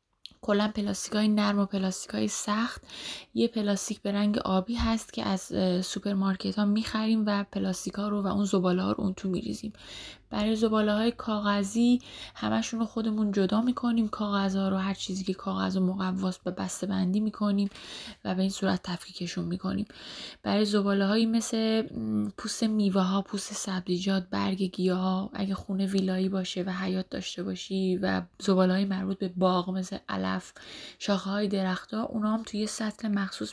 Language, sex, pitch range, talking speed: Persian, female, 185-215 Hz, 170 wpm